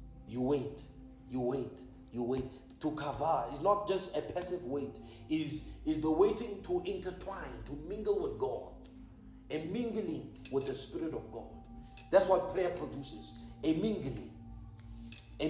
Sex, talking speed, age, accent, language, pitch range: male, 145 wpm, 50-69, South African, English, 130-185 Hz